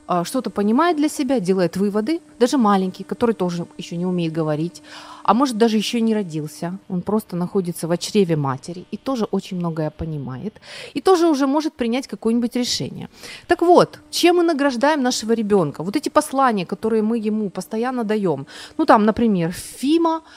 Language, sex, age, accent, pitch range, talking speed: Ukrainian, female, 30-49, native, 185-285 Hz, 170 wpm